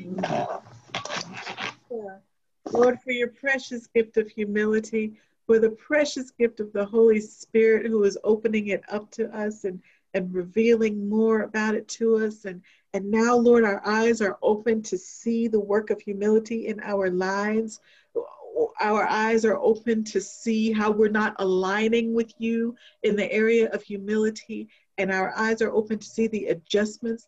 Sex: female